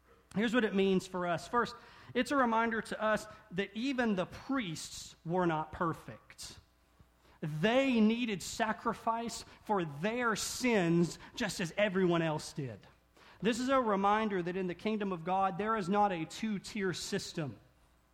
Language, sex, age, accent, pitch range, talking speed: English, male, 40-59, American, 175-240 Hz, 155 wpm